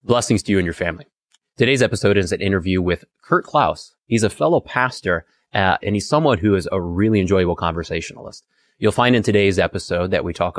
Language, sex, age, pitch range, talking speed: English, male, 30-49, 90-115 Hz, 205 wpm